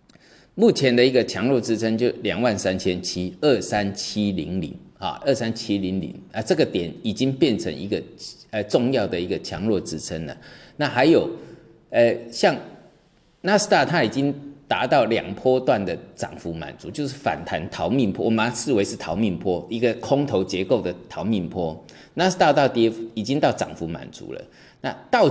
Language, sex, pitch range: Chinese, male, 100-135 Hz